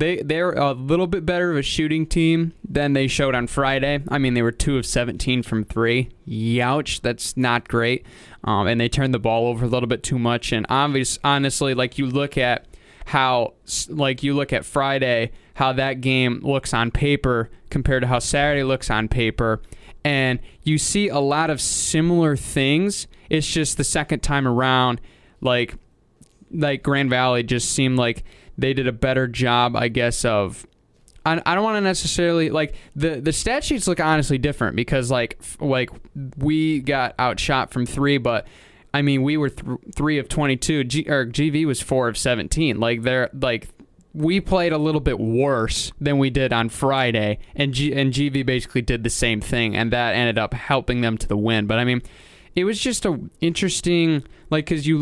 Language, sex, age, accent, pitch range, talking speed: English, male, 20-39, American, 120-150 Hz, 190 wpm